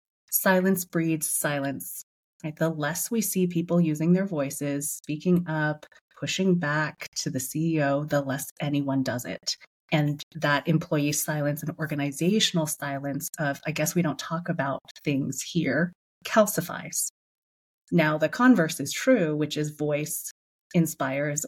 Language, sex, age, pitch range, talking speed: English, female, 30-49, 145-175 Hz, 135 wpm